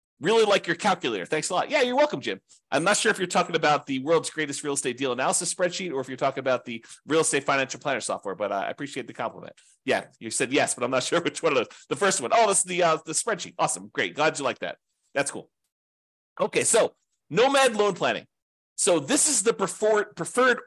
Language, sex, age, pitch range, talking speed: English, male, 40-59, 140-215 Hz, 240 wpm